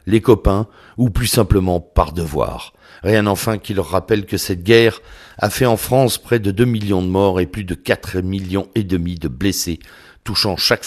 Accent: French